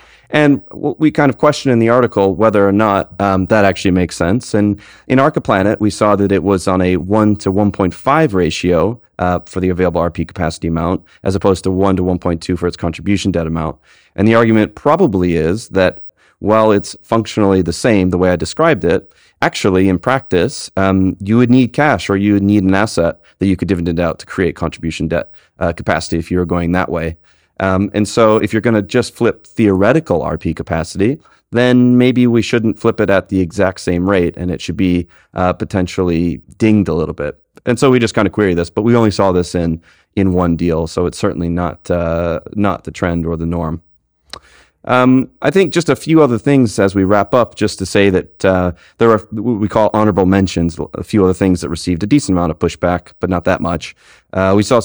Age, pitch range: 30-49, 90-110 Hz